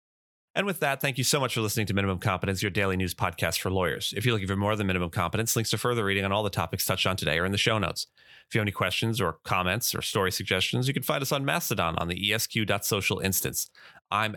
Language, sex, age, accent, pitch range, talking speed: English, male, 30-49, American, 95-120 Hz, 265 wpm